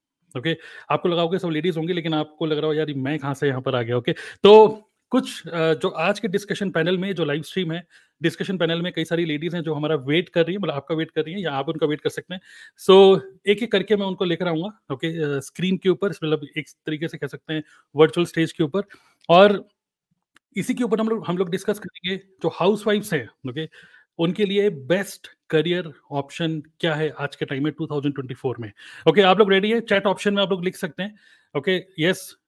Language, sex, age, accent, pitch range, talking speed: Hindi, male, 30-49, native, 160-195 Hz, 230 wpm